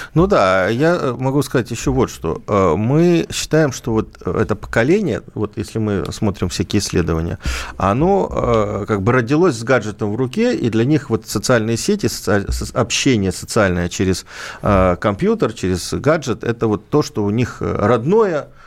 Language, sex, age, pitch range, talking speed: Russian, male, 50-69, 95-125 Hz, 150 wpm